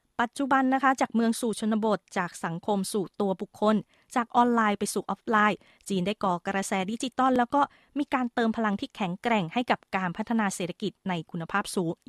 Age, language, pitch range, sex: 20-39, Thai, 190-235 Hz, female